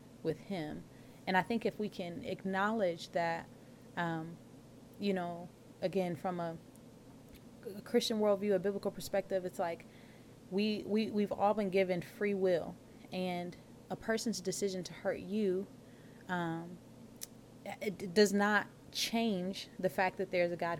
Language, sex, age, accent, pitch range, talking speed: English, female, 20-39, American, 175-200 Hz, 145 wpm